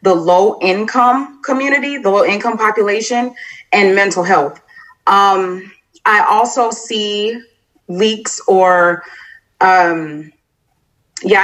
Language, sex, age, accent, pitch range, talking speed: English, female, 30-49, American, 175-225 Hz, 90 wpm